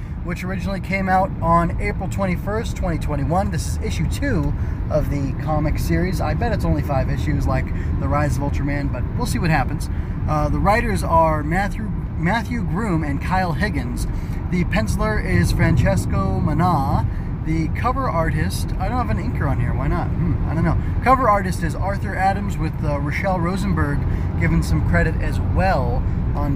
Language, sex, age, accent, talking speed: English, male, 20-39, American, 175 wpm